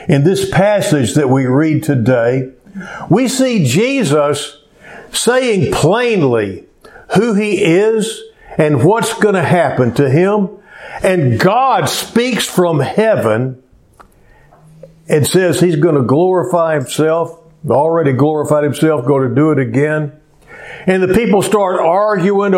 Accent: American